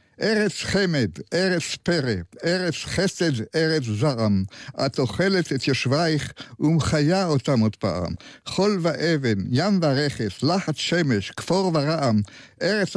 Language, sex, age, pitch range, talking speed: Hebrew, male, 60-79, 135-180 Hz, 115 wpm